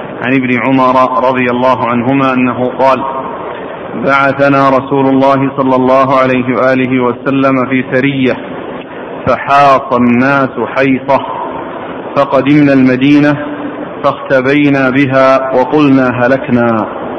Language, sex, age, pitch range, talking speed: Arabic, male, 40-59, 135-150 Hz, 95 wpm